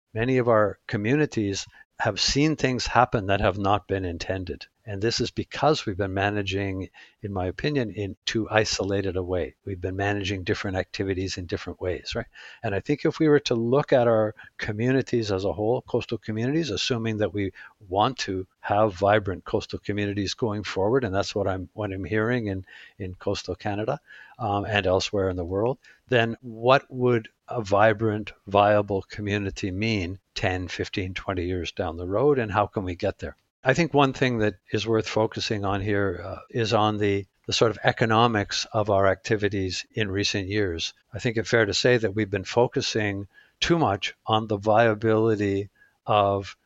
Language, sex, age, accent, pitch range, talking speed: English, male, 60-79, American, 95-115 Hz, 185 wpm